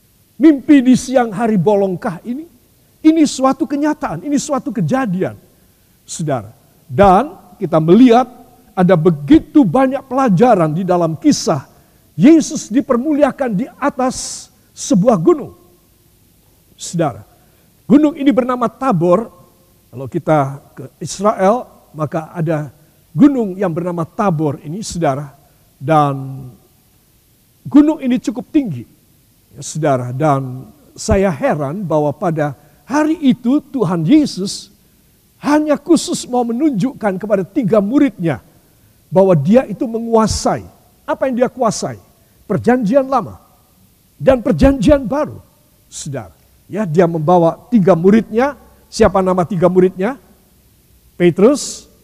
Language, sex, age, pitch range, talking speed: Indonesian, male, 50-69, 160-260 Hz, 105 wpm